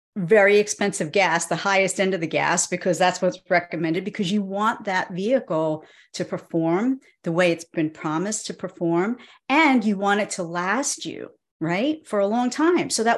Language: English